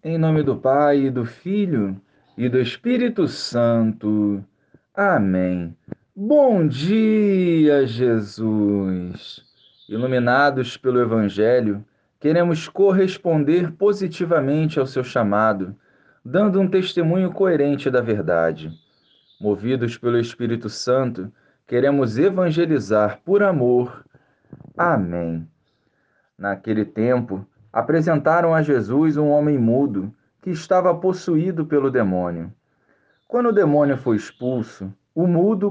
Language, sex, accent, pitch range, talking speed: Portuguese, male, Brazilian, 110-165 Hz, 100 wpm